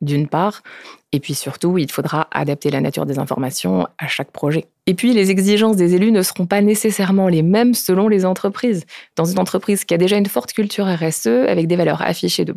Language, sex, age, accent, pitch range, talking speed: French, female, 20-39, French, 160-205 Hz, 215 wpm